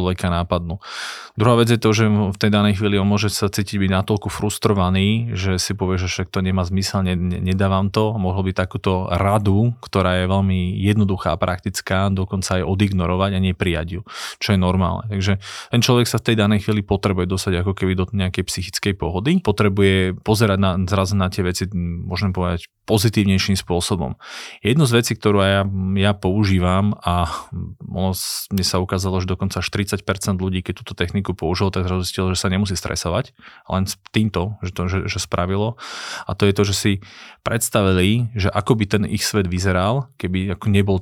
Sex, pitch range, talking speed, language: male, 95-105 Hz, 175 wpm, Slovak